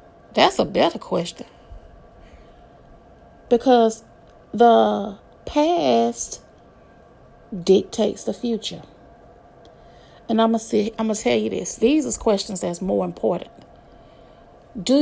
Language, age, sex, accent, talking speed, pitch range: English, 30-49, female, American, 95 wpm, 220-275 Hz